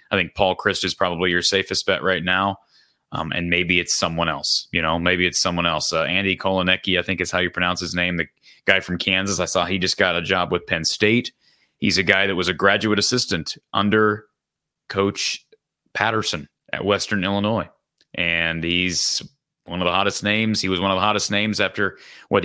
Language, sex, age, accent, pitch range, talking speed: English, male, 30-49, American, 85-105 Hz, 210 wpm